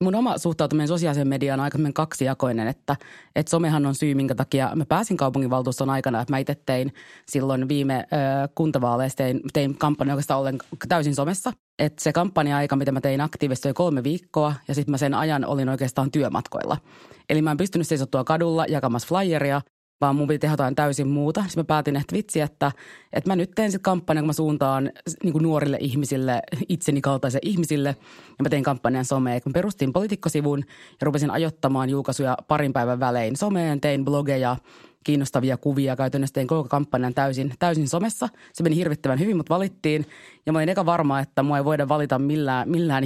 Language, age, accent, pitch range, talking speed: Finnish, 30-49, native, 135-155 Hz, 190 wpm